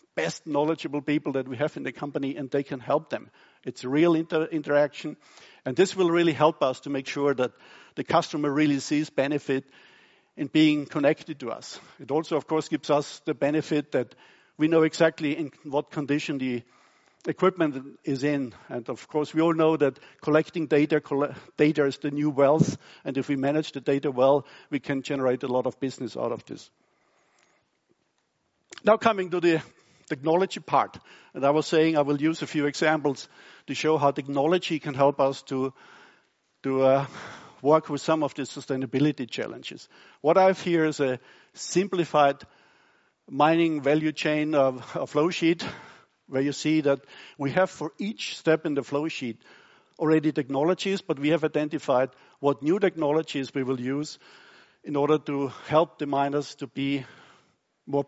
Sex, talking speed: male, 175 wpm